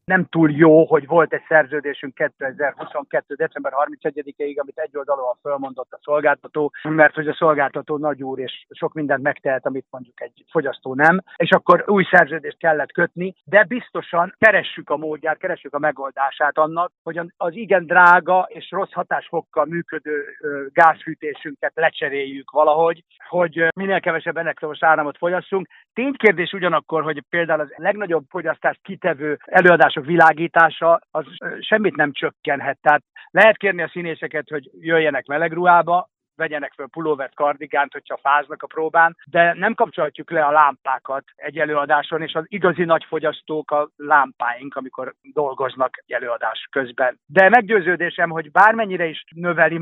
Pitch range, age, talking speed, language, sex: 145-175 Hz, 50-69, 145 wpm, Hungarian, male